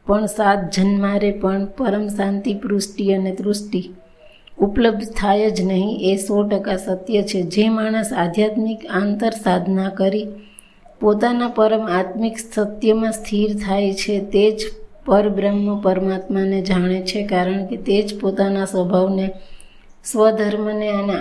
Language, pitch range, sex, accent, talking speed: Gujarati, 190-210 Hz, female, native, 110 wpm